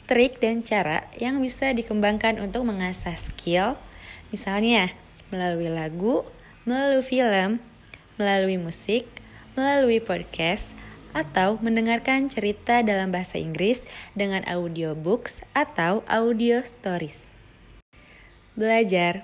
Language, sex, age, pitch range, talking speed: Indonesian, female, 20-39, 180-225 Hz, 95 wpm